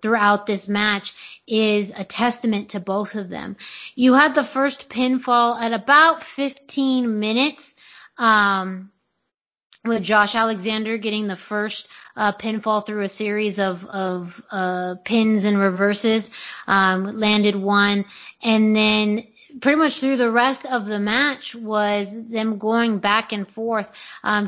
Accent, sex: American, female